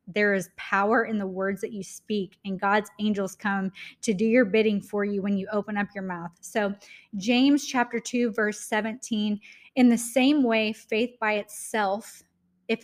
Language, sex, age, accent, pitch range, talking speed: English, female, 20-39, American, 195-235 Hz, 180 wpm